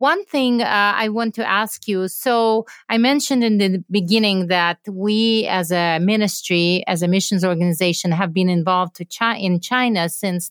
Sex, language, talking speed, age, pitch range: female, English, 165 wpm, 40-59, 185-230 Hz